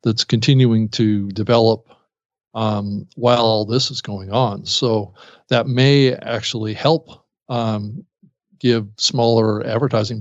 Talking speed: 120 wpm